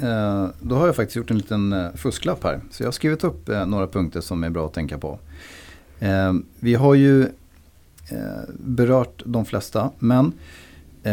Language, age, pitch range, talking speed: Swedish, 30-49, 80-105 Hz, 155 wpm